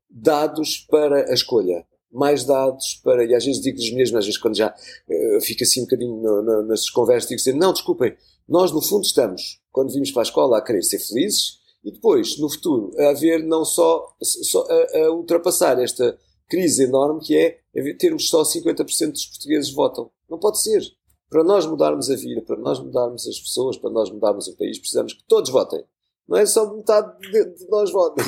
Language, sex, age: Portuguese, male, 50-69